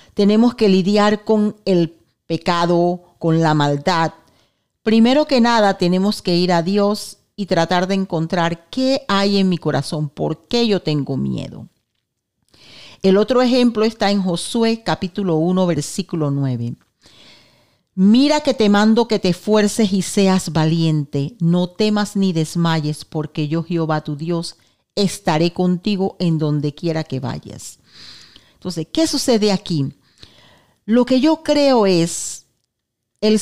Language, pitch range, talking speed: English, 160-215 Hz, 140 wpm